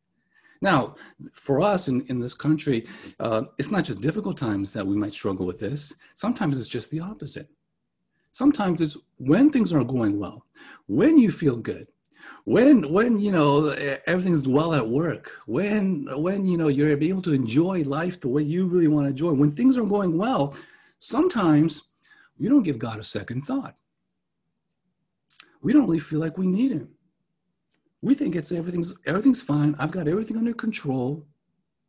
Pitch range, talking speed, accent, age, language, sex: 130-185 Hz, 175 wpm, American, 50-69, English, male